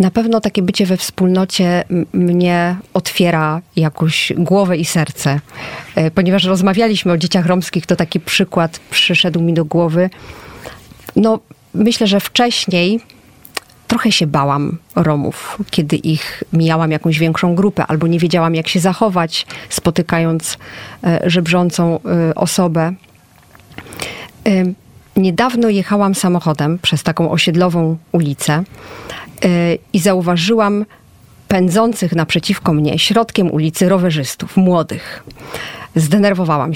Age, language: 40-59, Polish